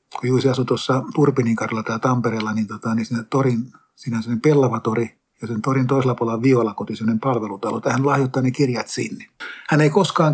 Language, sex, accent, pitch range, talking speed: Finnish, male, native, 115-135 Hz, 175 wpm